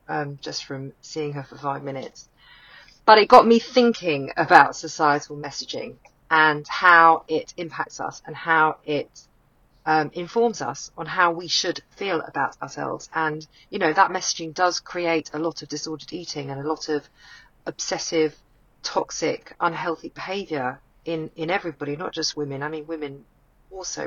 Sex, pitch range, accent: female, 145-170 Hz, British